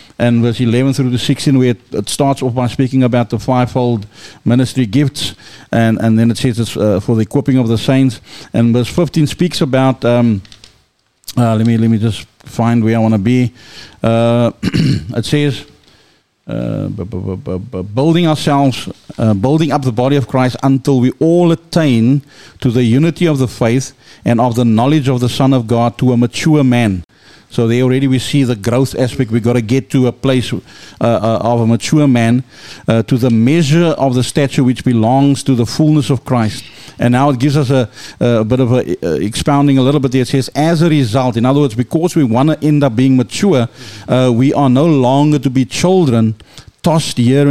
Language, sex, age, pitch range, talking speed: English, male, 50-69, 115-140 Hz, 195 wpm